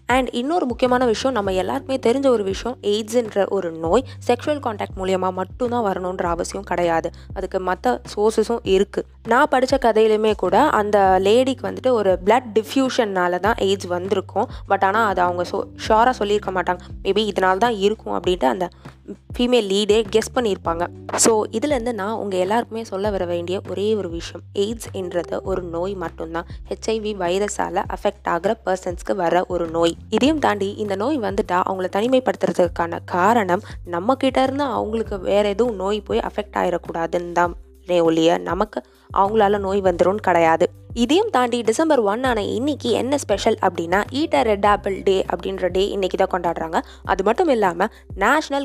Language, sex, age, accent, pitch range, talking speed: Tamil, female, 20-39, native, 185-240 Hz, 140 wpm